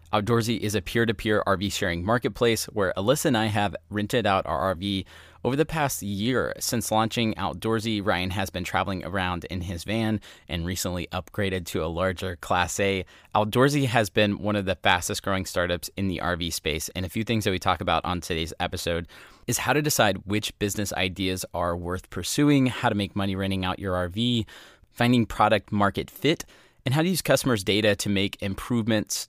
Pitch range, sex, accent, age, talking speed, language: 95-115 Hz, male, American, 20-39, 190 wpm, English